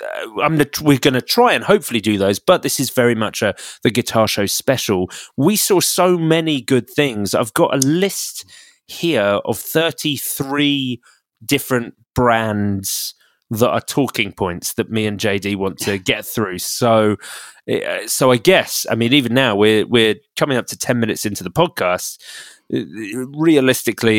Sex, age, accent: male, 20-39, British